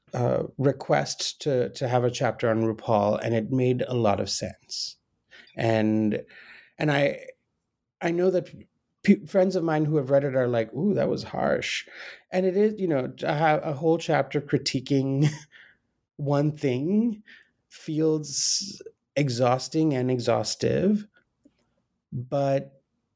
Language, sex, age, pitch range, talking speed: English, male, 30-49, 130-165 Hz, 145 wpm